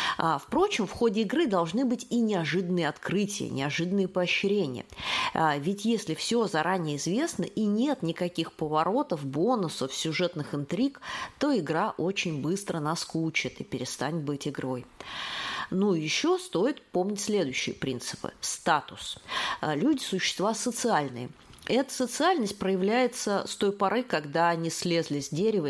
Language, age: Russian, 30-49